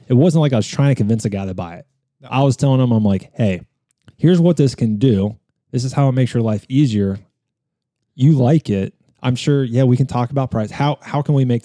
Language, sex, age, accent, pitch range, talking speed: English, male, 20-39, American, 110-135 Hz, 250 wpm